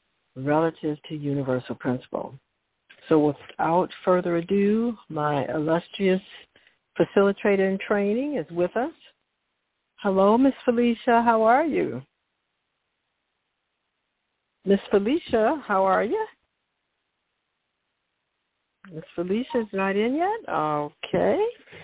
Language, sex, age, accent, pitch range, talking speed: English, female, 60-79, American, 155-200 Hz, 95 wpm